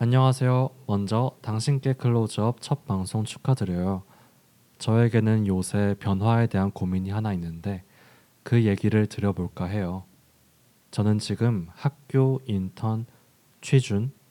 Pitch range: 100-130 Hz